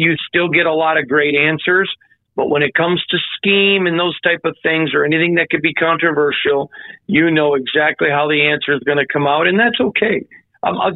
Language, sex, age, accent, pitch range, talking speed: English, male, 50-69, American, 140-165 Hz, 225 wpm